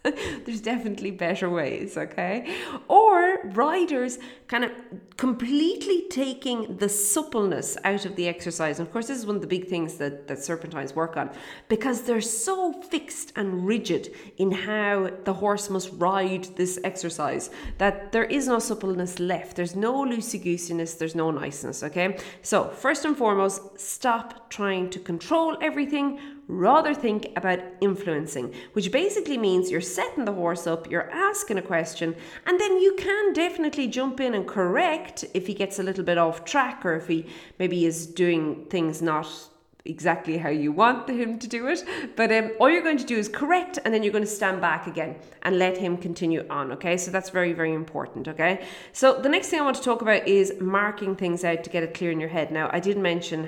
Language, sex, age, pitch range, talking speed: English, female, 30-49, 170-255 Hz, 190 wpm